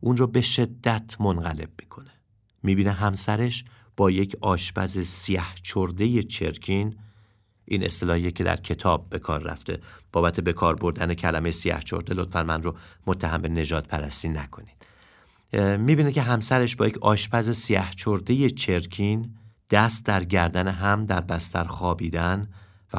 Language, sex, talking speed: Persian, male, 140 wpm